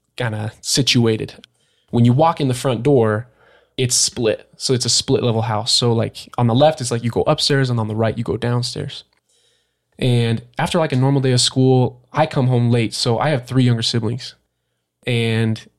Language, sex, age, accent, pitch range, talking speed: English, male, 20-39, American, 115-130 Hz, 205 wpm